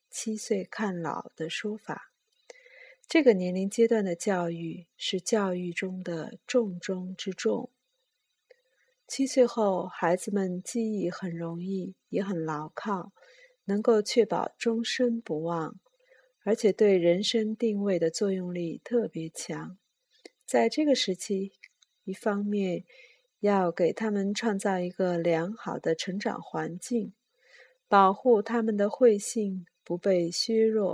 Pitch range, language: 185-240 Hz, Chinese